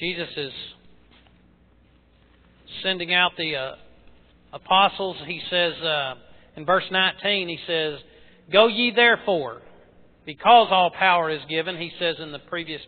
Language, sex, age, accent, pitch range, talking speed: English, male, 40-59, American, 145-195 Hz, 130 wpm